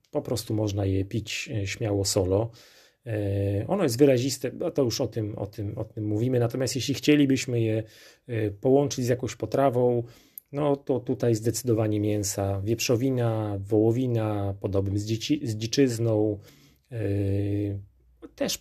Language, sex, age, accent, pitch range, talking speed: Polish, male, 30-49, native, 100-120 Hz, 125 wpm